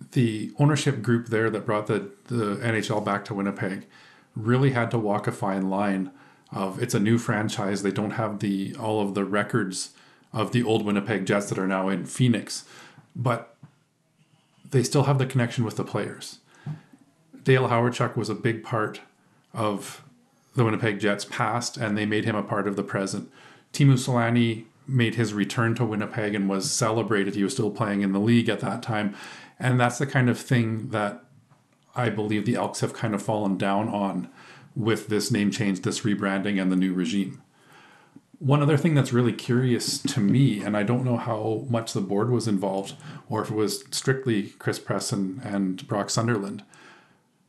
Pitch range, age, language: 100-125 Hz, 40-59, English